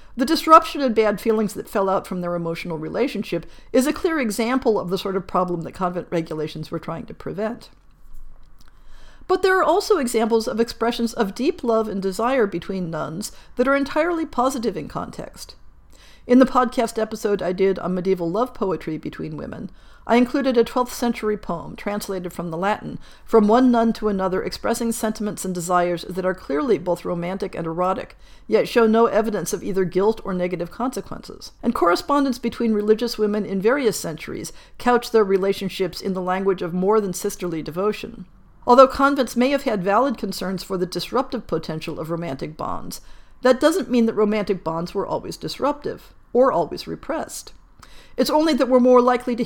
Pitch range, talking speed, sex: 180-240 Hz, 180 wpm, female